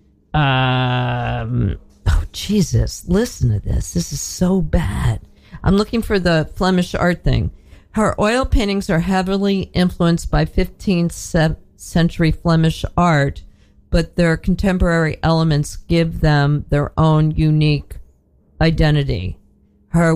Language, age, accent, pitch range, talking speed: English, 50-69, American, 130-175 Hz, 115 wpm